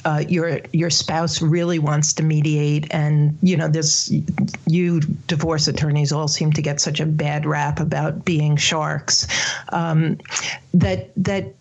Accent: American